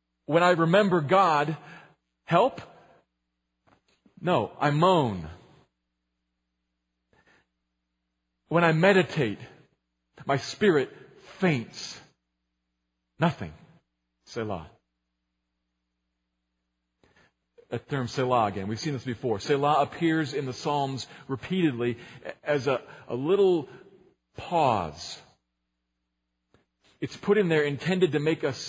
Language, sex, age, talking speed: English, male, 40-59, 90 wpm